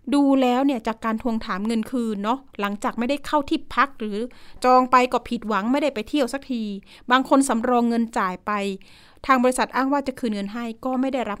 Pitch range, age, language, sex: 210-270 Hz, 30-49, Thai, female